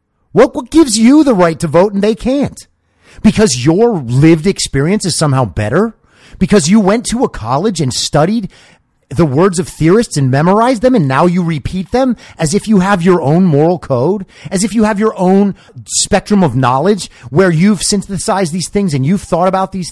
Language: English